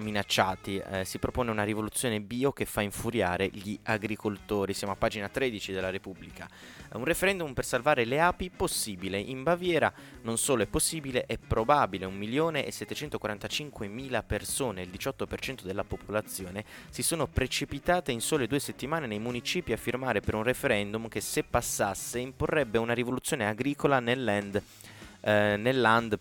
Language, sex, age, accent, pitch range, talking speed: Italian, male, 20-39, native, 100-130 Hz, 150 wpm